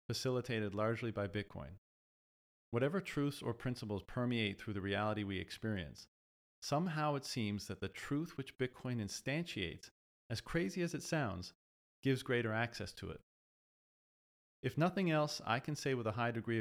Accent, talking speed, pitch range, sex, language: American, 155 wpm, 100-120 Hz, male, English